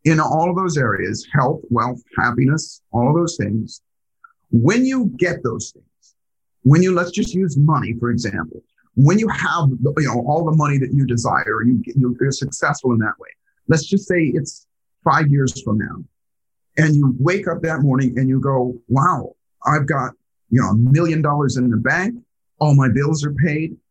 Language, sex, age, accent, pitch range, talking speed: English, male, 50-69, American, 130-180 Hz, 185 wpm